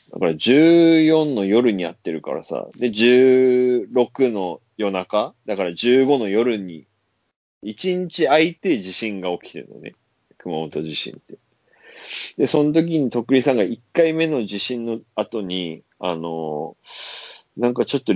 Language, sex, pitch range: Japanese, male, 90-125 Hz